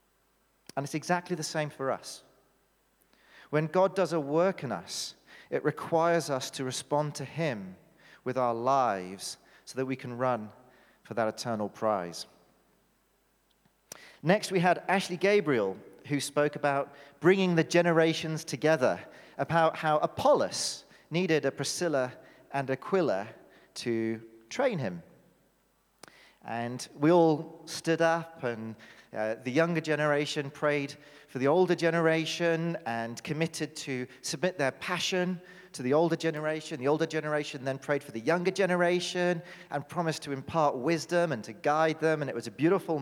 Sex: male